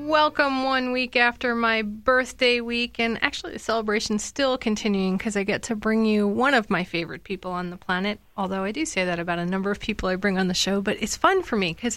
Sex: female